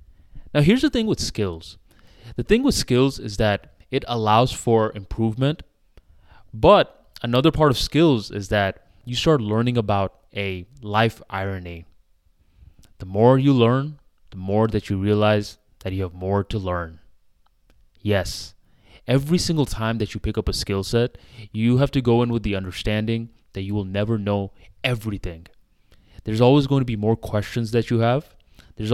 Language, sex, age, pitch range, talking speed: English, male, 20-39, 100-120 Hz, 170 wpm